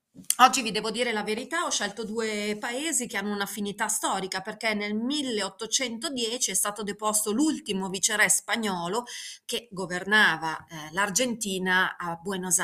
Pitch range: 185-225 Hz